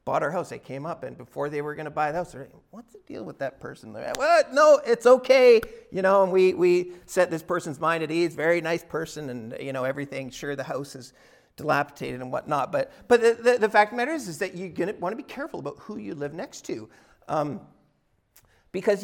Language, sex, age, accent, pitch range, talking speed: English, male, 40-59, American, 180-245 Hz, 245 wpm